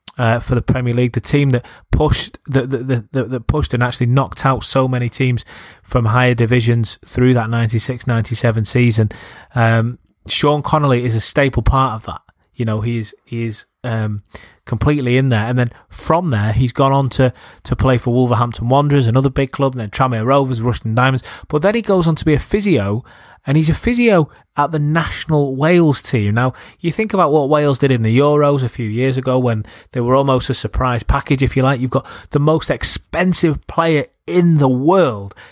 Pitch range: 120-145 Hz